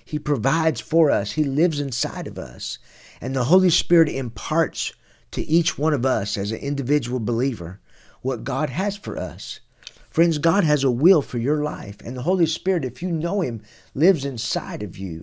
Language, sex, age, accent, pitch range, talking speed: English, male, 50-69, American, 115-155 Hz, 190 wpm